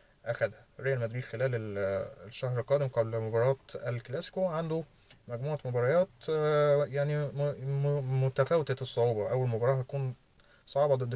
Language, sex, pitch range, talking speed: Arabic, male, 120-145 Hz, 110 wpm